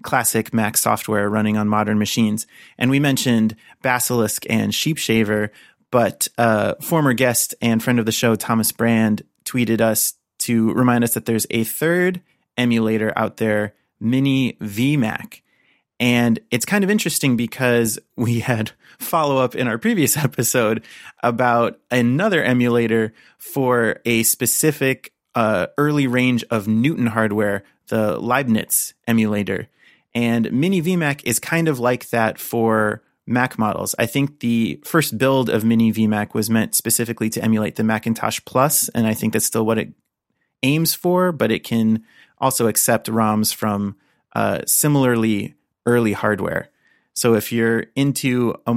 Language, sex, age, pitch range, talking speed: English, male, 30-49, 110-130 Hz, 150 wpm